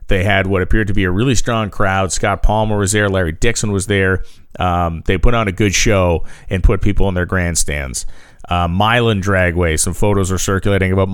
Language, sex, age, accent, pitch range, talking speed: English, male, 30-49, American, 90-105 Hz, 210 wpm